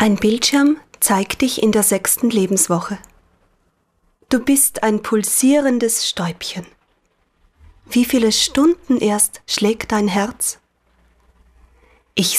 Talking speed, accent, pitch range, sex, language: 100 wpm, German, 195-255 Hz, female, German